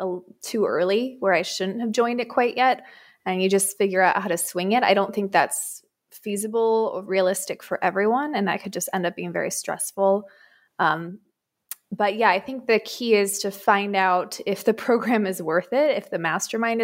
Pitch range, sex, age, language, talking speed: 185-230 Hz, female, 20-39, English, 205 wpm